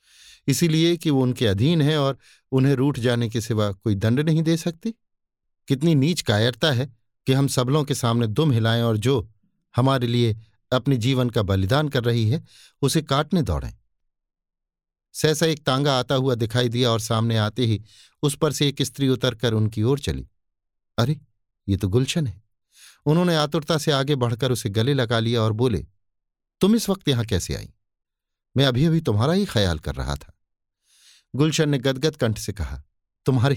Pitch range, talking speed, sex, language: 105-150 Hz, 180 wpm, male, Hindi